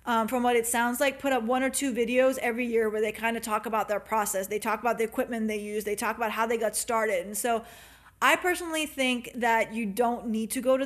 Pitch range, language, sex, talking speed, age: 220-250 Hz, English, female, 265 wpm, 20-39